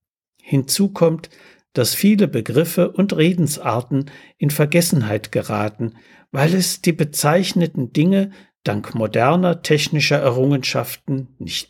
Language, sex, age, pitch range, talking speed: German, male, 60-79, 120-175 Hz, 105 wpm